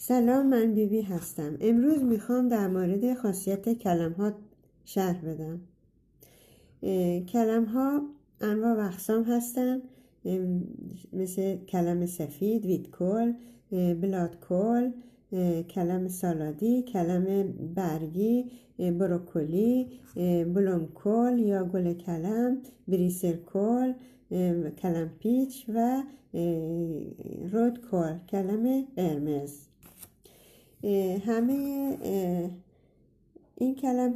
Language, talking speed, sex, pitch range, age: Persian, 85 wpm, female, 175-235 Hz, 60-79